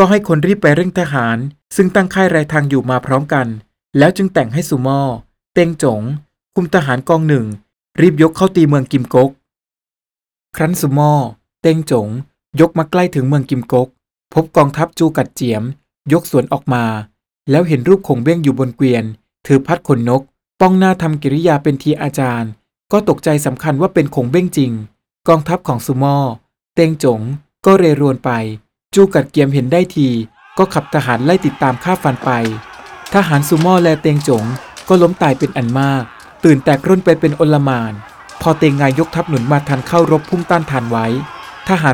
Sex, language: male, Thai